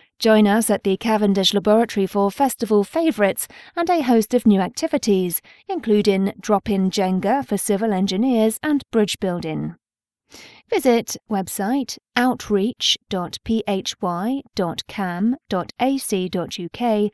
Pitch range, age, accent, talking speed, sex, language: 195-255 Hz, 30-49, British, 100 wpm, female, English